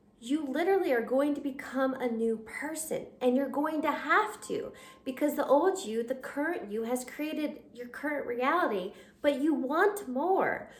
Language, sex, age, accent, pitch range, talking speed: English, female, 20-39, American, 240-290 Hz, 170 wpm